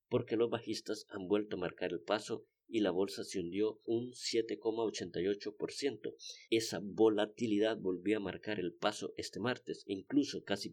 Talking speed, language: 150 wpm, Spanish